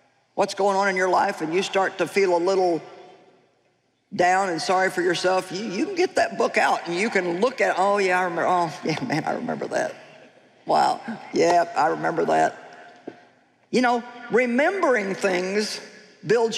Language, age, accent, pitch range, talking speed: English, 50-69, American, 175-230 Hz, 180 wpm